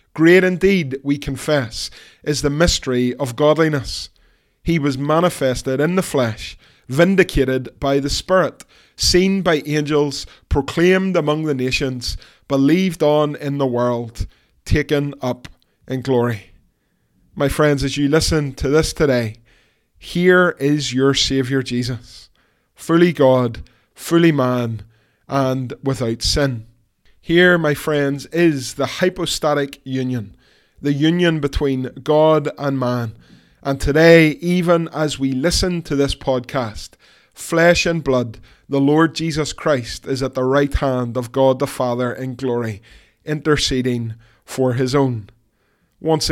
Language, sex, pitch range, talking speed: English, male, 125-155 Hz, 130 wpm